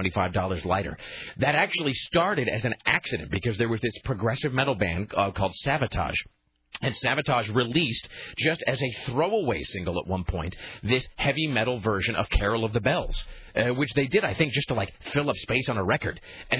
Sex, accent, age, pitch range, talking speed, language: male, American, 40-59, 100-145 Hz, 190 wpm, English